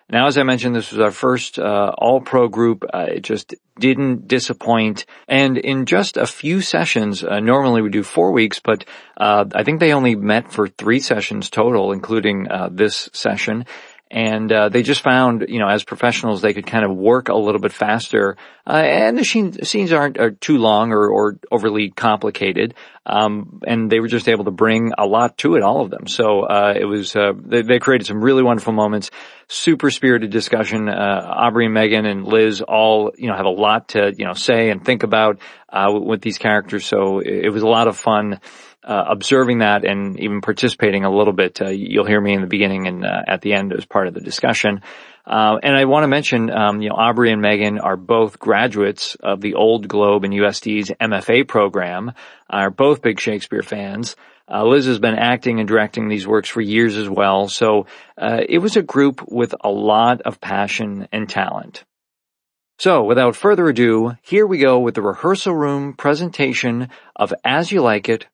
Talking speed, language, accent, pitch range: 200 wpm, English, American, 105-125 Hz